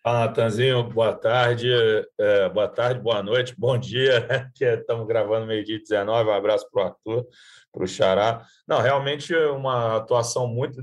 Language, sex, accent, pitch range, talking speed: Portuguese, male, Brazilian, 120-165 Hz, 155 wpm